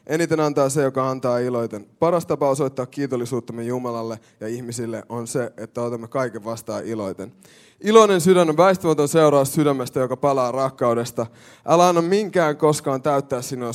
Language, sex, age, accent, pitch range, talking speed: Finnish, male, 20-39, native, 120-150 Hz, 155 wpm